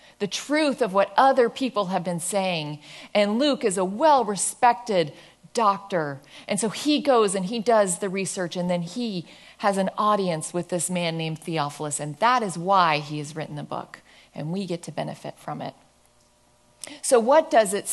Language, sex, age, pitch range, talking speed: English, female, 40-59, 185-255 Hz, 190 wpm